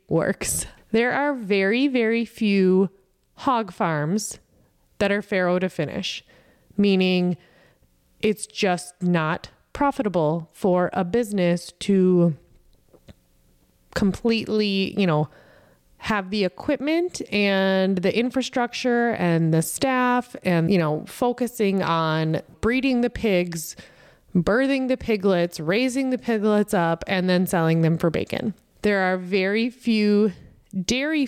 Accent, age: American, 20-39